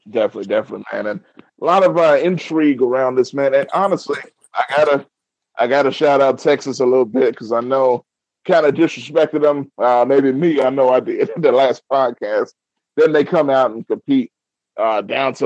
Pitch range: 125-190 Hz